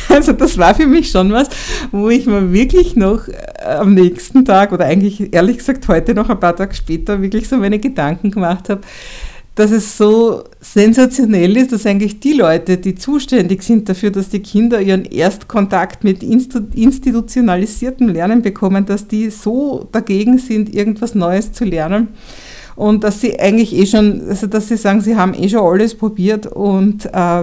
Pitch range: 185-225 Hz